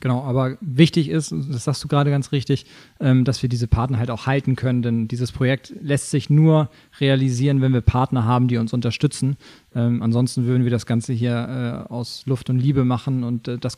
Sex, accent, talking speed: male, German, 195 wpm